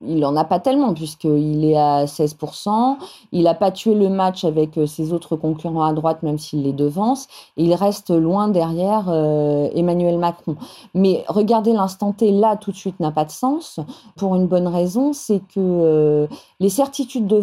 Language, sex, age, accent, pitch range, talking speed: French, female, 40-59, French, 175-245 Hz, 185 wpm